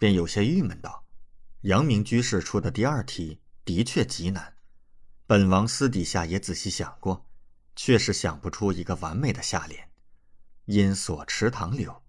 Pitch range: 90-125 Hz